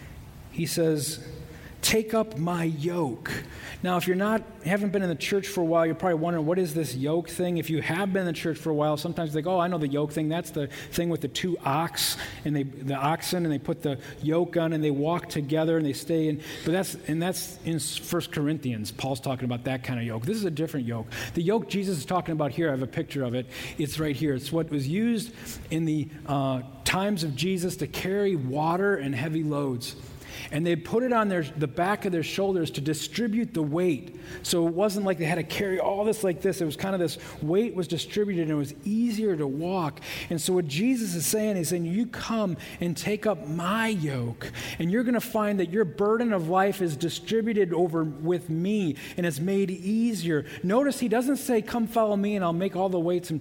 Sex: male